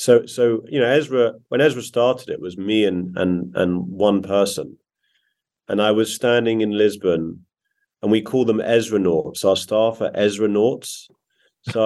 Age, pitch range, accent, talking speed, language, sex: 30-49, 100-130 Hz, British, 170 wpm, English, male